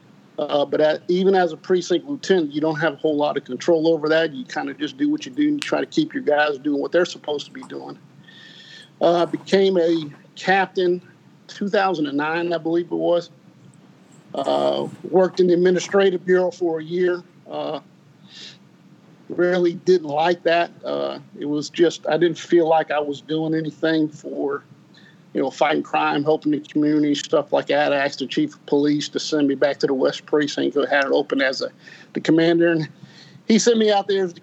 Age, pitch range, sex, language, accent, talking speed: 50-69, 150-180 Hz, male, English, American, 200 wpm